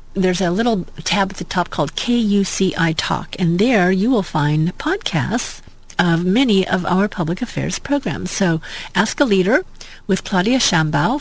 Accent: American